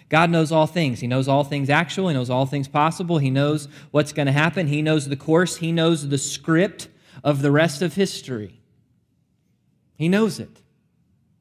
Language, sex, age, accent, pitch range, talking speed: English, male, 20-39, American, 135-165 Hz, 190 wpm